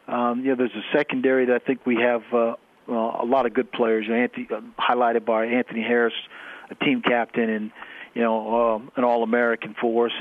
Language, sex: English, male